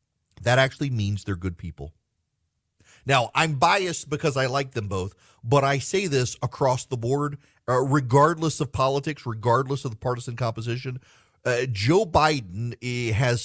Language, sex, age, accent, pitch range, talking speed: English, male, 40-59, American, 105-150 Hz, 150 wpm